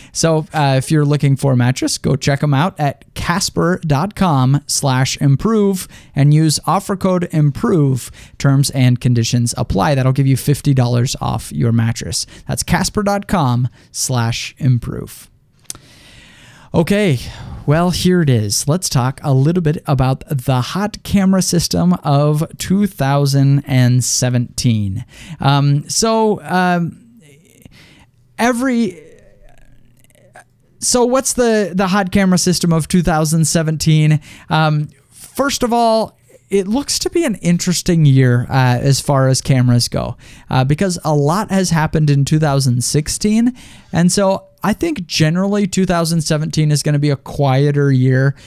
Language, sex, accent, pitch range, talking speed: English, male, American, 130-180 Hz, 130 wpm